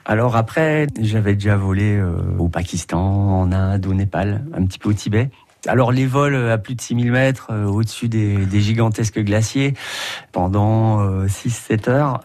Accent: French